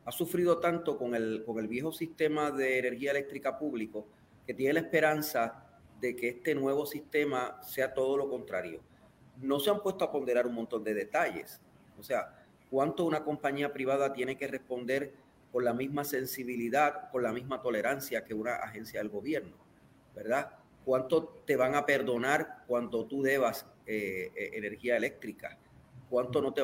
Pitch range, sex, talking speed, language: 120-145 Hz, male, 165 wpm, Spanish